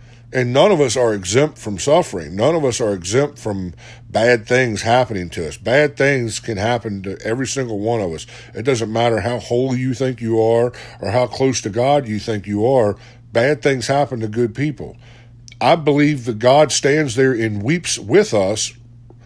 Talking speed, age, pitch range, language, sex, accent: 195 wpm, 50-69, 120-155 Hz, English, male, American